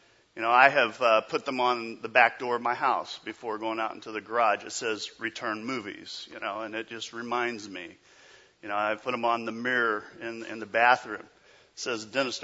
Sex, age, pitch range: male, 40-59, 115-150 Hz